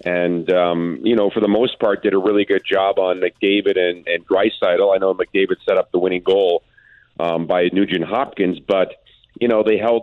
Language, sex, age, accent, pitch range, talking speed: English, male, 40-59, American, 95-115 Hz, 210 wpm